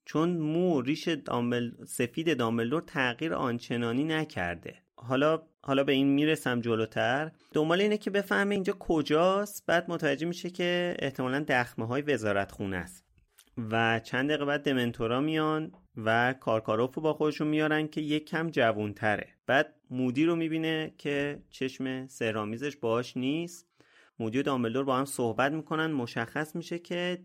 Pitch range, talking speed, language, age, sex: 110-155 Hz, 135 wpm, Persian, 30-49, male